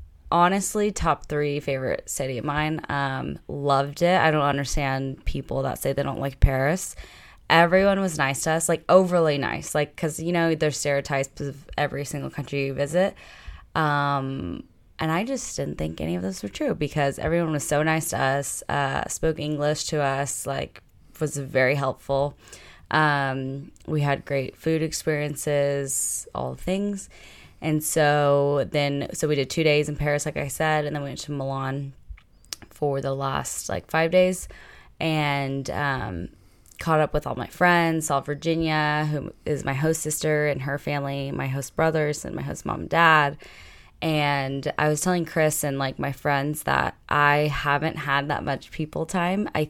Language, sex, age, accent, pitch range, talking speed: English, female, 10-29, American, 135-160 Hz, 175 wpm